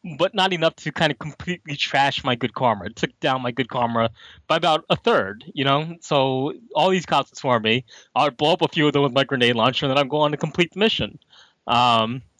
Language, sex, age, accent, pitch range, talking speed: English, male, 20-39, American, 120-155 Hz, 240 wpm